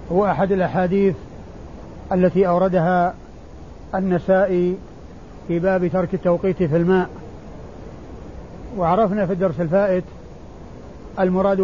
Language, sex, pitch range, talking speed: Arabic, male, 180-210 Hz, 90 wpm